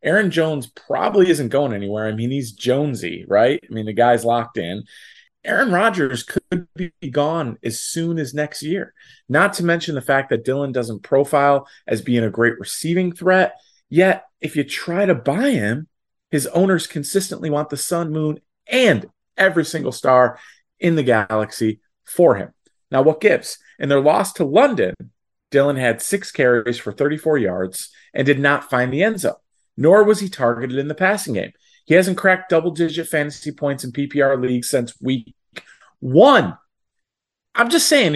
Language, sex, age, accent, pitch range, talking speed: English, male, 30-49, American, 125-185 Hz, 175 wpm